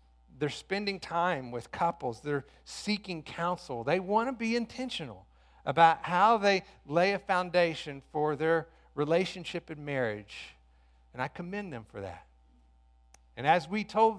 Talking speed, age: 145 wpm, 50-69